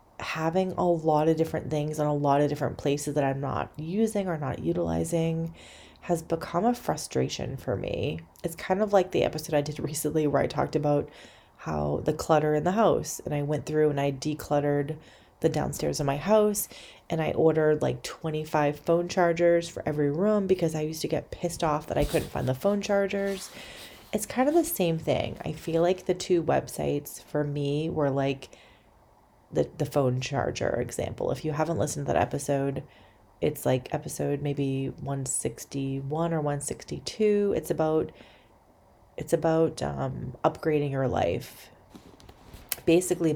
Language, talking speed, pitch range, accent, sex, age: English, 170 wpm, 140-170 Hz, American, female, 30-49